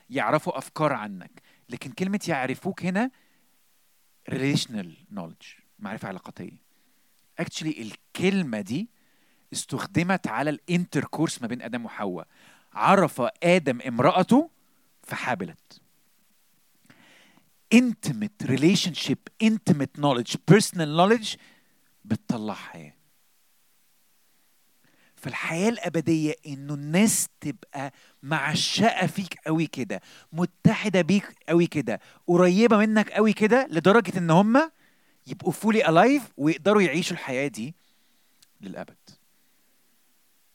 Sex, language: male, Arabic